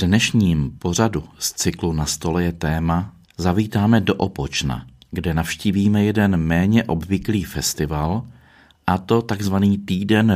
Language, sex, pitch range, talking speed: Czech, male, 90-115 Hz, 125 wpm